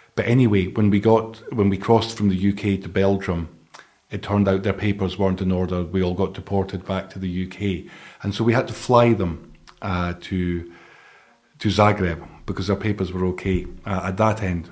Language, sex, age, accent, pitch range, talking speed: Czech, male, 40-59, British, 95-110 Hz, 200 wpm